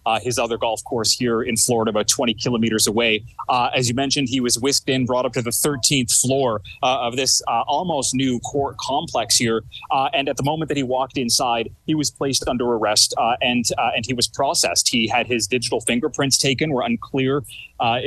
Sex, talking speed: male, 215 wpm